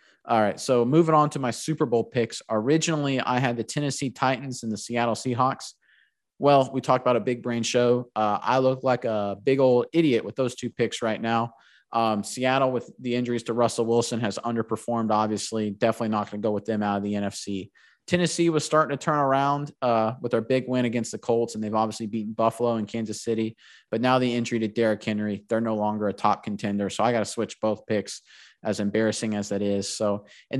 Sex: male